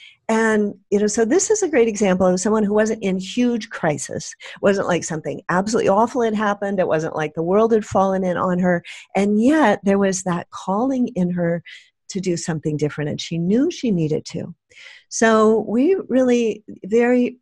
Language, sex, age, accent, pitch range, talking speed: English, female, 50-69, American, 160-220 Hz, 190 wpm